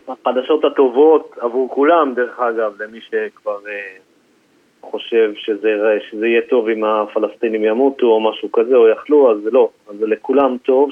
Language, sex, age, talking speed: Hebrew, male, 40-59, 150 wpm